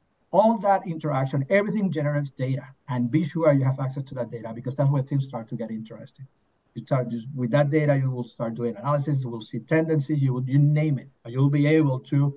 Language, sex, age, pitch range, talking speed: English, male, 50-69, 125-155 Hz, 230 wpm